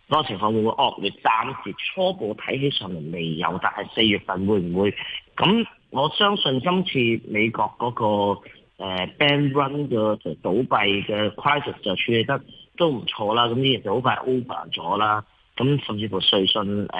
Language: Chinese